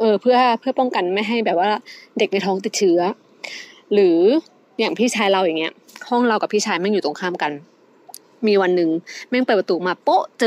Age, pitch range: 20-39, 195-255 Hz